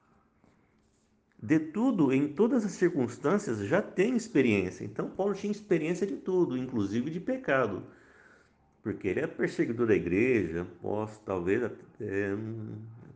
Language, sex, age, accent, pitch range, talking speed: Portuguese, male, 50-69, Brazilian, 110-175 Hz, 125 wpm